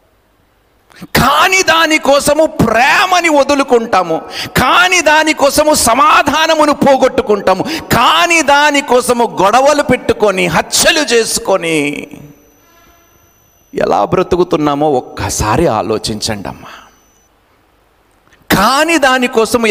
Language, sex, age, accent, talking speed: Telugu, male, 50-69, native, 65 wpm